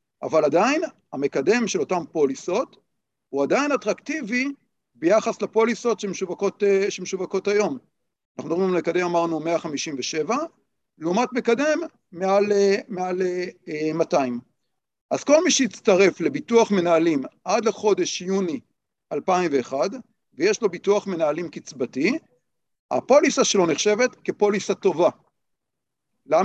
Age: 50-69